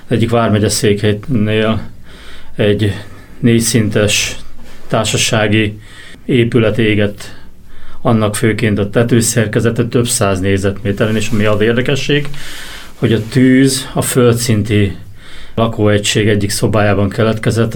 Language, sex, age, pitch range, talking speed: Hungarian, male, 30-49, 105-125 Hz, 95 wpm